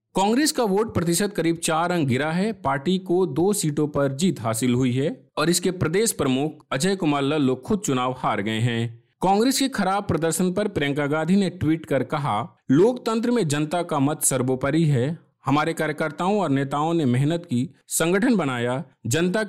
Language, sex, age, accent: Hindi, male, 50-69, native